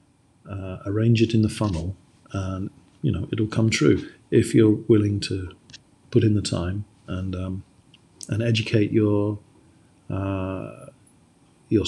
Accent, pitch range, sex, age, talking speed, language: British, 100-135 Hz, male, 40-59, 135 wpm, English